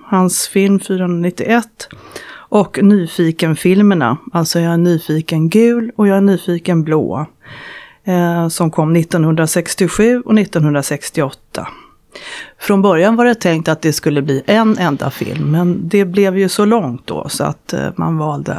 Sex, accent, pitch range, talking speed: female, Swedish, 165-210 Hz, 145 wpm